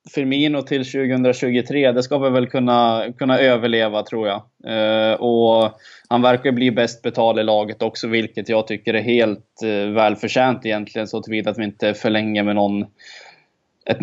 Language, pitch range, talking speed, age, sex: Swedish, 110-125 Hz, 170 wpm, 20-39, male